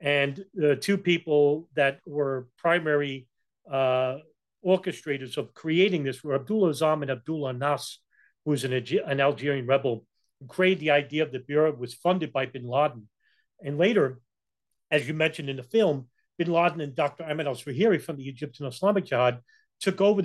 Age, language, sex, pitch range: 40-59, English, male, 135-175 Hz